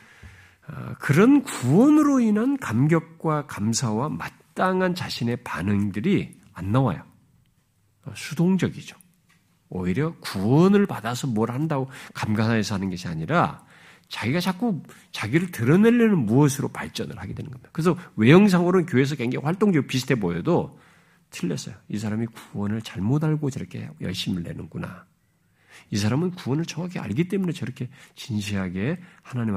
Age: 50-69